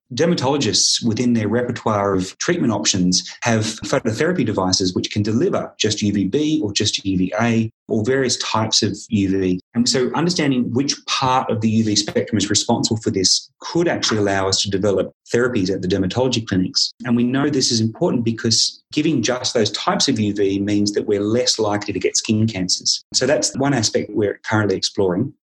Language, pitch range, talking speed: English, 100-125 Hz, 180 wpm